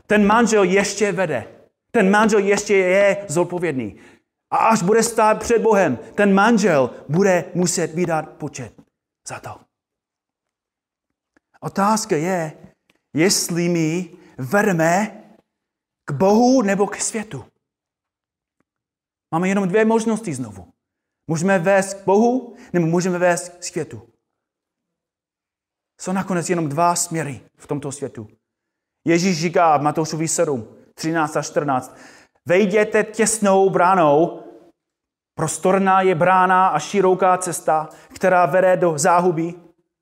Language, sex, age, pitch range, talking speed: Czech, male, 30-49, 155-195 Hz, 110 wpm